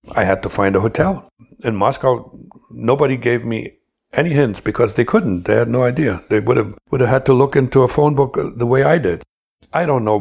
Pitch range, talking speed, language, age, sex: 100-125 Hz, 230 wpm, English, 60-79, male